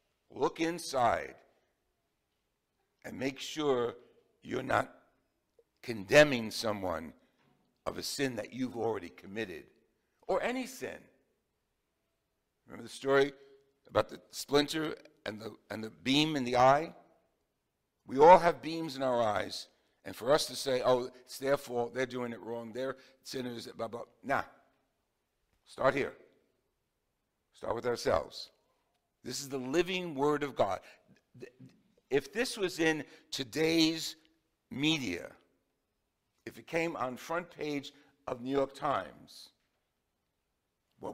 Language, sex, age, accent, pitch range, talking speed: English, male, 60-79, American, 125-160 Hz, 130 wpm